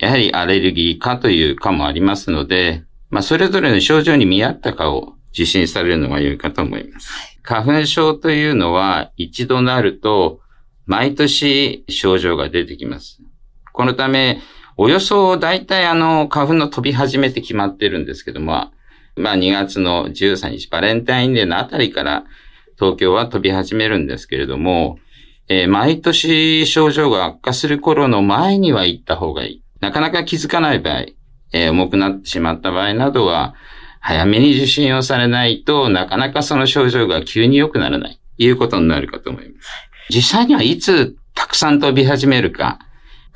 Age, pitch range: 50-69, 100-155 Hz